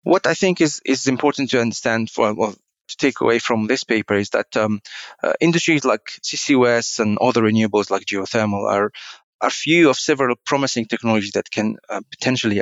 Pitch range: 105-120 Hz